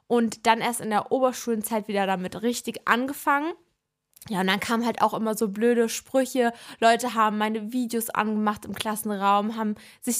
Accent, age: German, 20-39